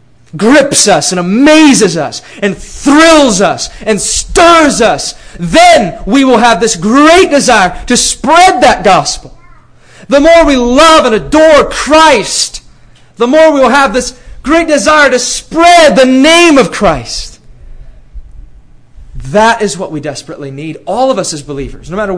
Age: 30-49